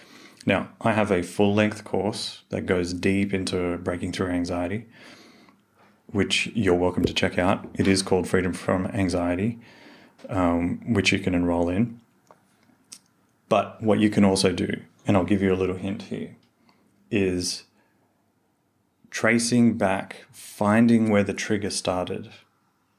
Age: 30-49